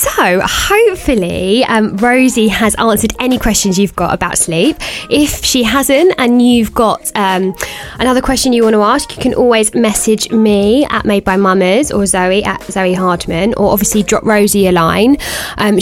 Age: 20-39